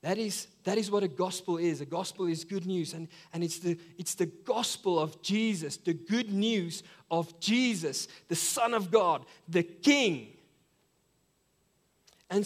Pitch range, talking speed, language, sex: 170-215 Hz, 165 wpm, English, male